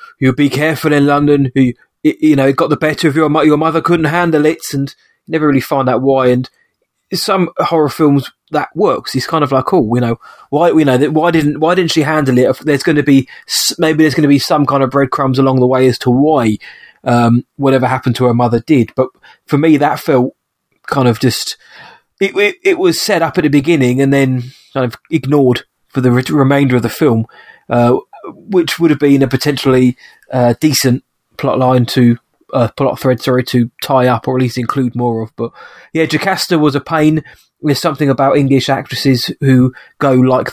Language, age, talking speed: English, 20-39, 210 wpm